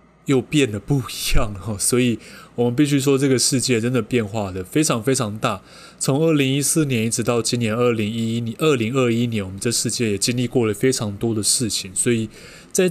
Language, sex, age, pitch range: Chinese, male, 20-39, 105-135 Hz